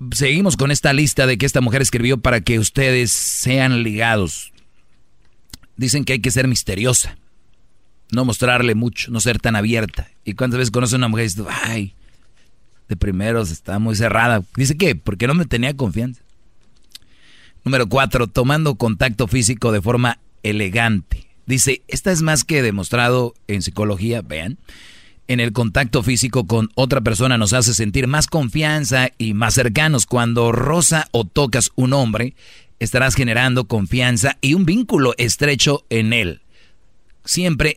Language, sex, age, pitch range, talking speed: Spanish, male, 40-59, 110-130 Hz, 155 wpm